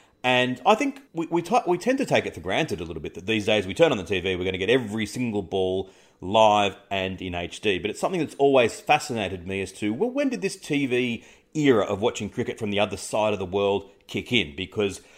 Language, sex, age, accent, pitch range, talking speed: English, male, 30-49, Australian, 95-125 Hz, 250 wpm